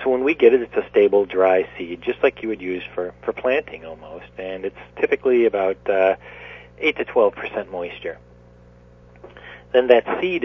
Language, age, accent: English, 40-59, American